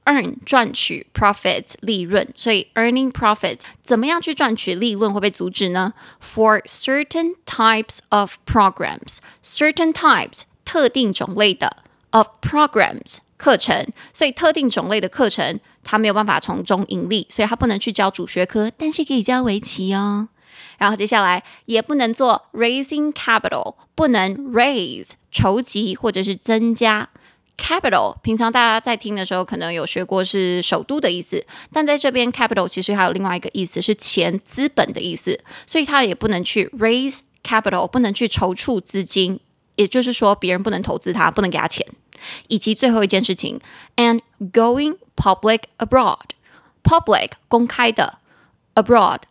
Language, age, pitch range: Chinese, 20-39, 200-255 Hz